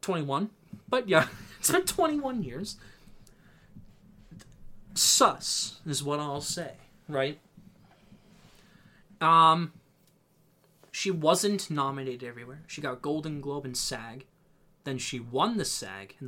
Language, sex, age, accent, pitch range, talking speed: English, male, 20-39, American, 135-185 Hz, 110 wpm